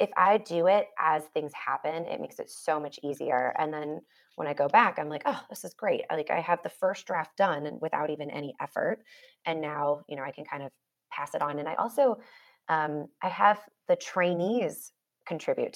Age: 20-39